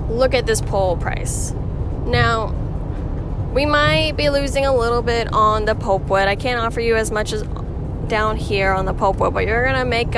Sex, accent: female, American